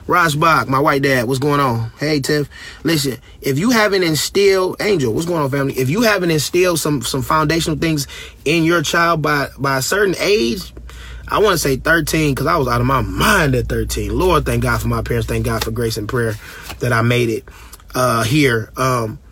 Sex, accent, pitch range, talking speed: male, American, 120-155 Hz, 215 wpm